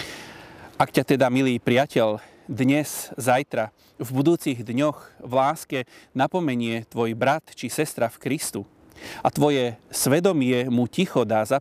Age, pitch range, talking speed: 30-49, 115-140 Hz, 135 wpm